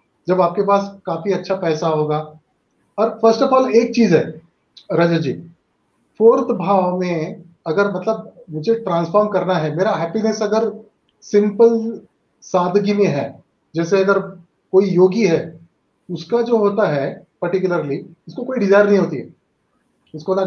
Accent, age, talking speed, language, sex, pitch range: native, 30-49, 140 wpm, Hindi, male, 165-220 Hz